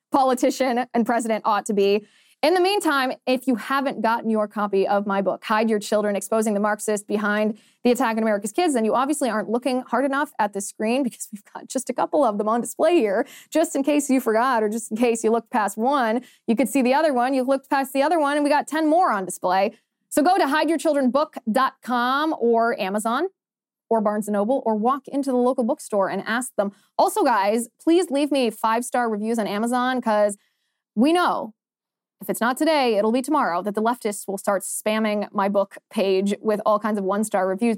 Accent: American